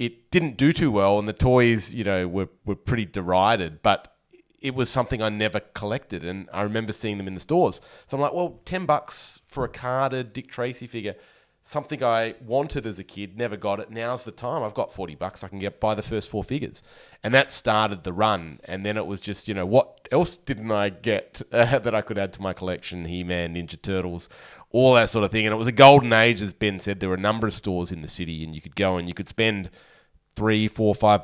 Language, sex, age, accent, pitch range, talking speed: English, male, 30-49, Australian, 90-110 Hz, 245 wpm